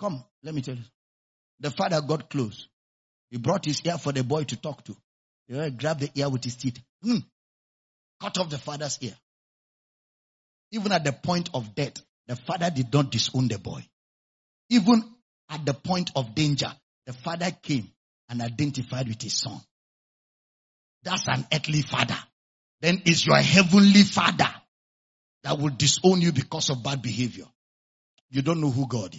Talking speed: 165 wpm